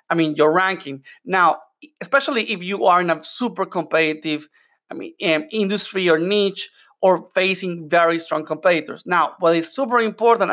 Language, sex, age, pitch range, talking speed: English, male, 30-49, 165-205 Hz, 155 wpm